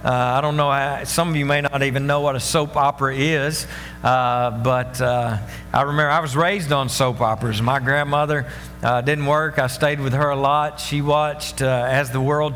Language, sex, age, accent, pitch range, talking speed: English, male, 50-69, American, 130-170 Hz, 210 wpm